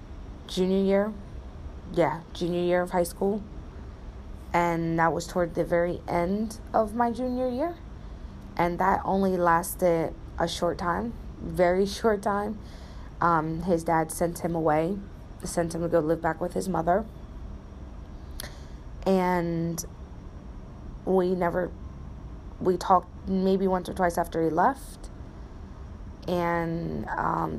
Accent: American